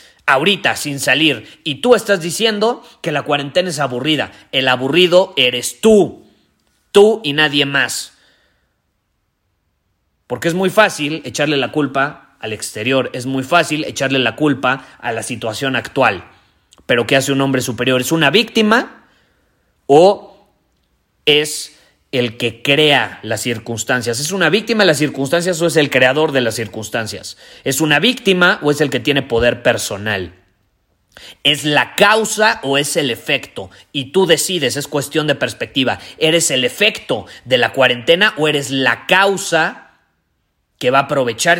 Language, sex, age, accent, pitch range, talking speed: Spanish, male, 30-49, Mexican, 120-160 Hz, 155 wpm